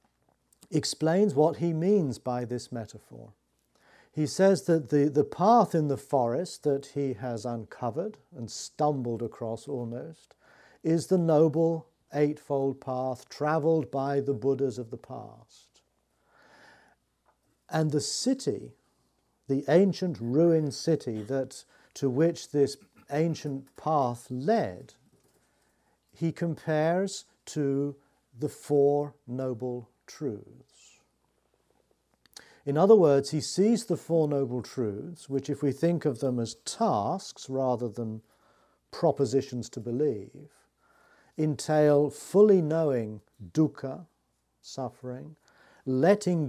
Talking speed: 110 wpm